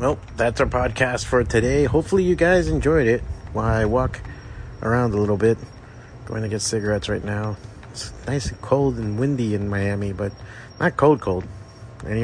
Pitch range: 105-140 Hz